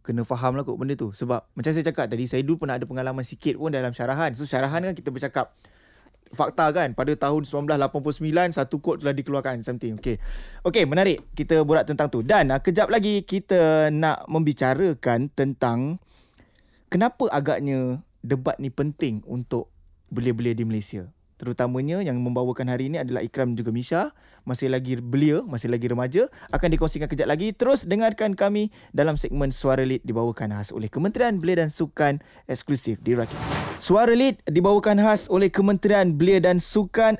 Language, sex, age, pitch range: Malay, male, 20-39, 130-175 Hz